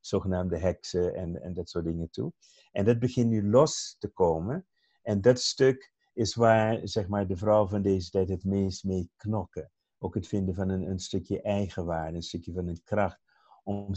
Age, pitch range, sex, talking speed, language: 50-69, 95-115 Hz, male, 195 wpm, Dutch